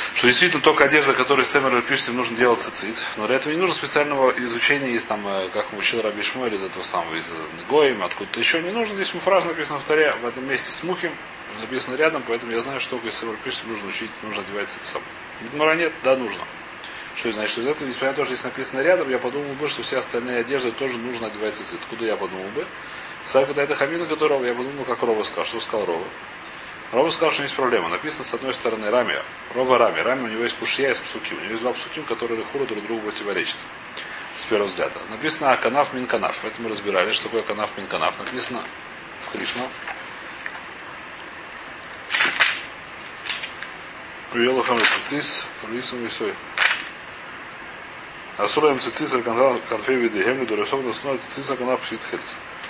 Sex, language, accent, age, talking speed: male, Russian, native, 30-49, 175 wpm